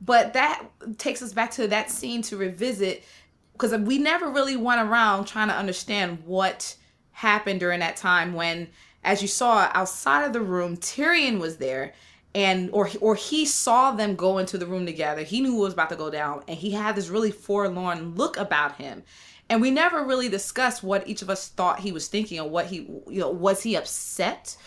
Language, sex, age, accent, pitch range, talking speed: English, female, 20-39, American, 185-240 Hz, 205 wpm